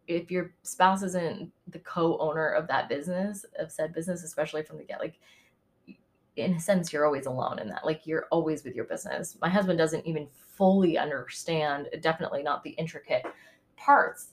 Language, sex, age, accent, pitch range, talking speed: English, female, 20-39, American, 155-180 Hz, 175 wpm